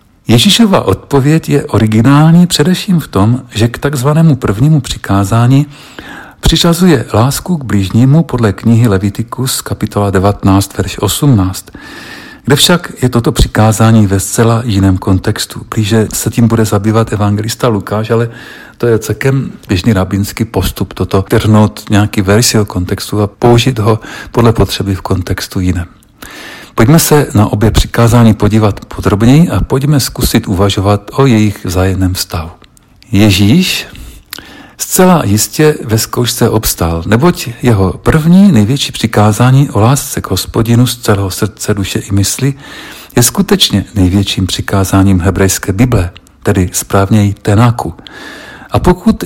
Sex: male